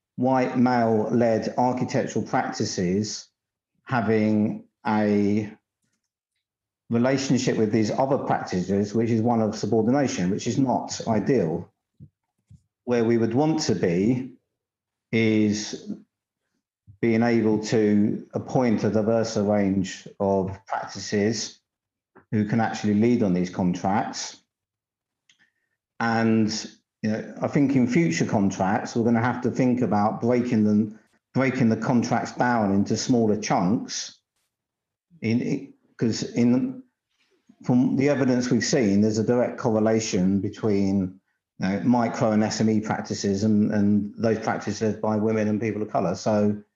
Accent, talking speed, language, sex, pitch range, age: British, 125 wpm, English, male, 105-125 Hz, 50-69